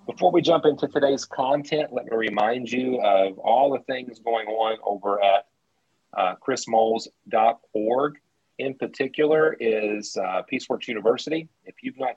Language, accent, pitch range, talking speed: English, American, 100-120 Hz, 145 wpm